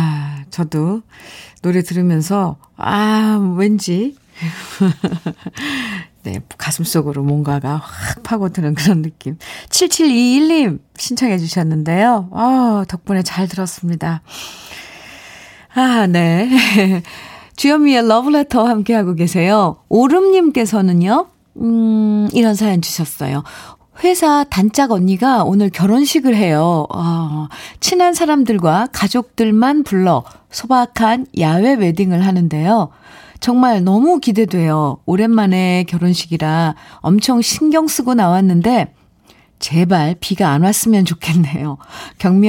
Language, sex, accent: Korean, female, native